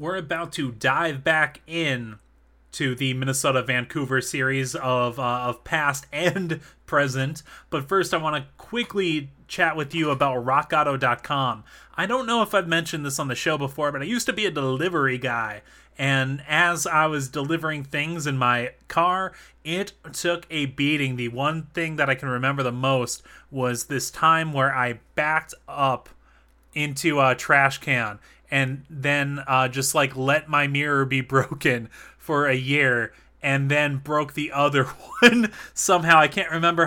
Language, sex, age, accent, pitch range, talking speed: English, male, 30-49, American, 135-160 Hz, 165 wpm